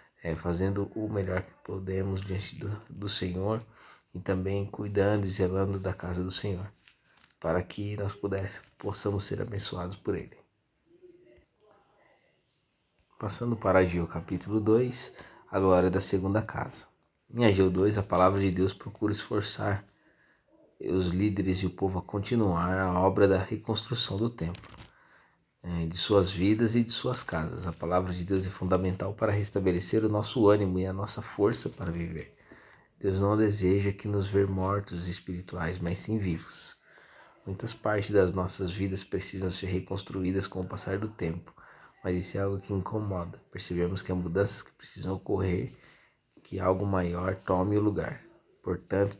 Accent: Brazilian